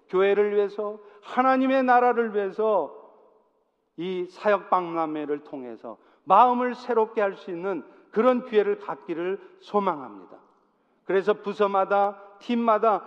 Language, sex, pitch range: Korean, male, 190-250 Hz